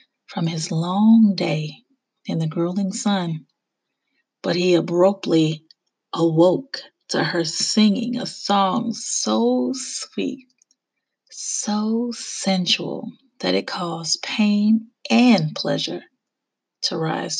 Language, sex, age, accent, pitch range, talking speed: English, female, 30-49, American, 170-240 Hz, 100 wpm